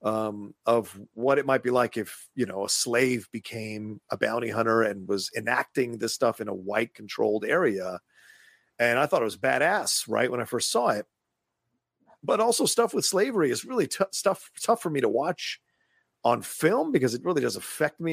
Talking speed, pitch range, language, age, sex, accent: 200 wpm, 110-150 Hz, English, 40-59, male, American